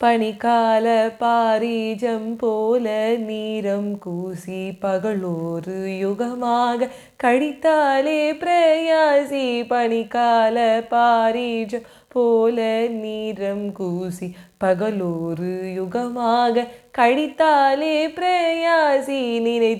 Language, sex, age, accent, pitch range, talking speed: Tamil, female, 20-39, native, 225-315 Hz, 60 wpm